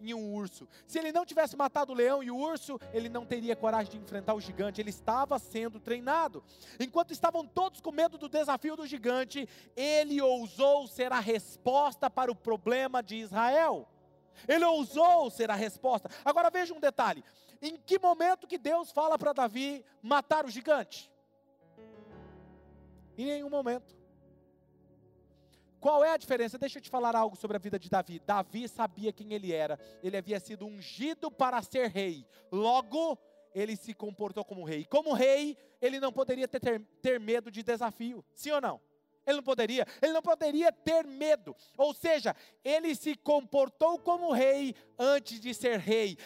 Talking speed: 170 wpm